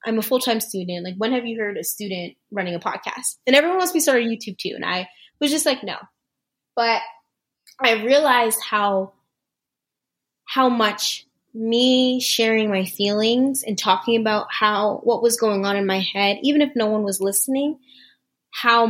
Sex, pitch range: female, 195-240 Hz